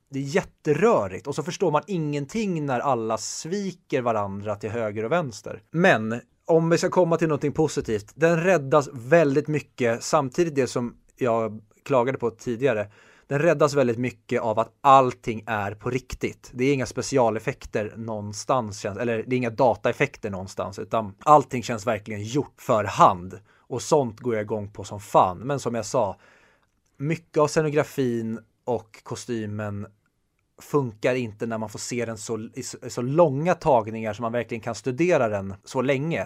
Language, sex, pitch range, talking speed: Swedish, male, 110-140 Hz, 170 wpm